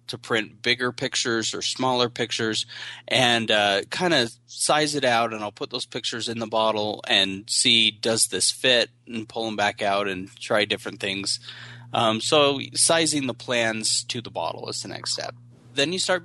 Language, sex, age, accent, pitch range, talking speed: English, male, 20-39, American, 110-125 Hz, 185 wpm